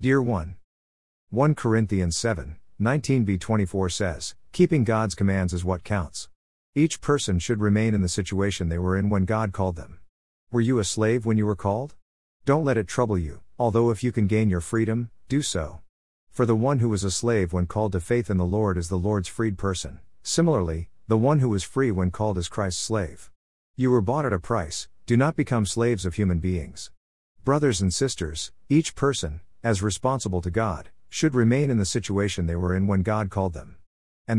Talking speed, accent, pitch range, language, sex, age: 200 wpm, American, 90-115 Hz, English, male, 50-69